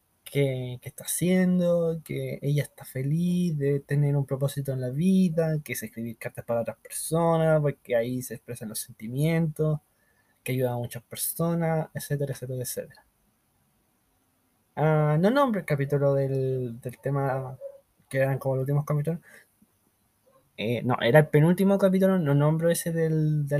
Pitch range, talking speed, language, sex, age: 130-155 Hz, 155 wpm, Spanish, male, 20-39